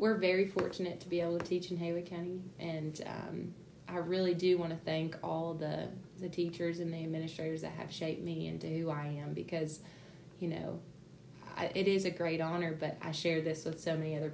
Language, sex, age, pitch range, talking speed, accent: English, female, 20-39, 155-175 Hz, 215 wpm, American